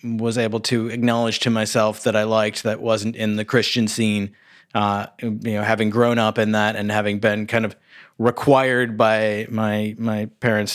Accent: American